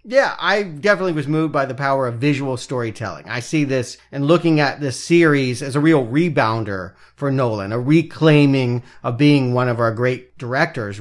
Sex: male